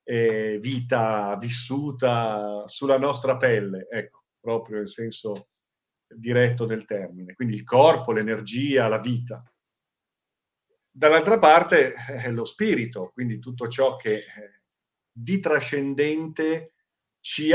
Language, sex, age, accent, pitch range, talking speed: Italian, male, 50-69, native, 110-135 Hz, 105 wpm